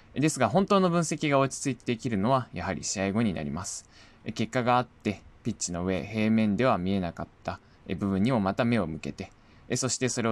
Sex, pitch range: male, 95-115 Hz